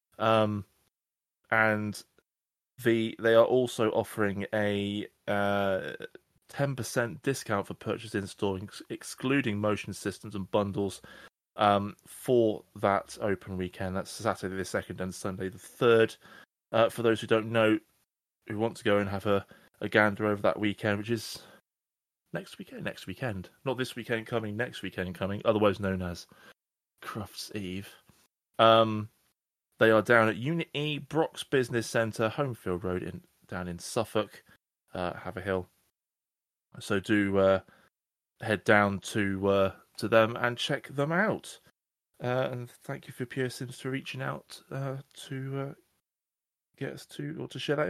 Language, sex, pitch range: English, male, 100-125 Hz